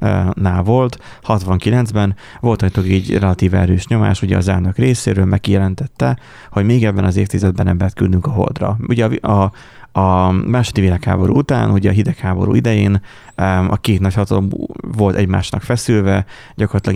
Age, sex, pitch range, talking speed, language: 30-49, male, 95-115 Hz, 145 wpm, Hungarian